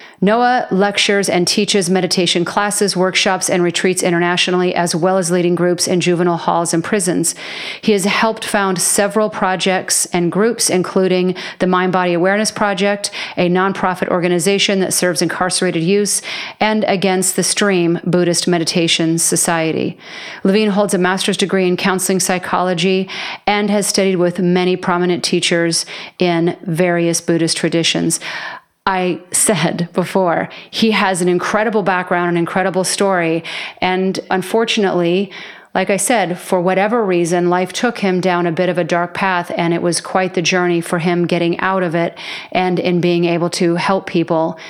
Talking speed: 155 wpm